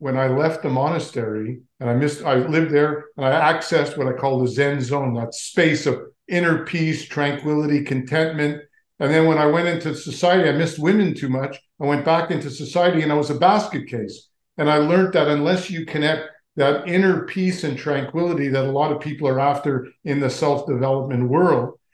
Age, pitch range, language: 50-69, 135-165 Hz, English